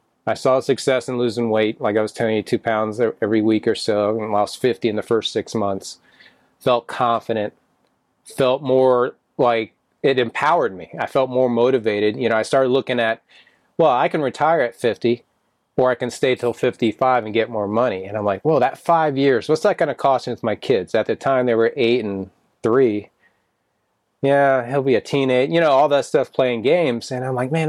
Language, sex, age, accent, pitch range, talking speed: English, male, 30-49, American, 110-135 Hz, 220 wpm